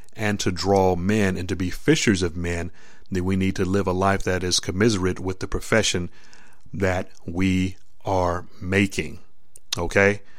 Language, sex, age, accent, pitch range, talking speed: English, male, 40-59, American, 95-105 Hz, 160 wpm